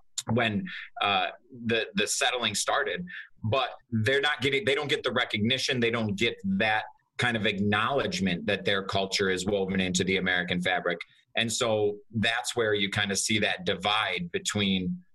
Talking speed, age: 165 wpm, 30-49